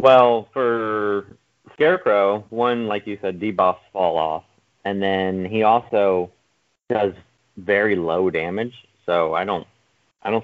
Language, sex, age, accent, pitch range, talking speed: English, male, 30-49, American, 95-115 Hz, 130 wpm